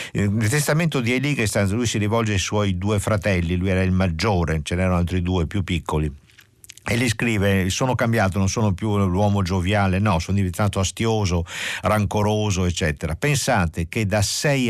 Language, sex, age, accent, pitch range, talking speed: Italian, male, 50-69, native, 95-125 Hz, 170 wpm